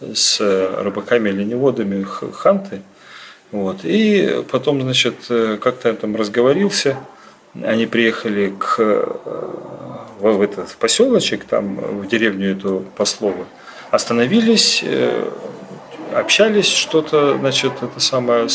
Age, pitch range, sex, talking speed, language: 30-49, 110-170 Hz, male, 95 wpm, Russian